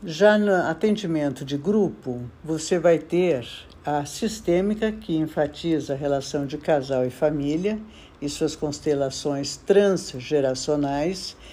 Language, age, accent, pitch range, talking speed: Portuguese, 60-79, Brazilian, 145-180 Hz, 115 wpm